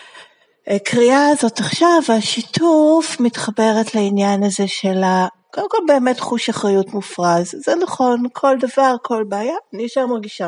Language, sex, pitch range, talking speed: Hebrew, female, 200-285 Hz, 130 wpm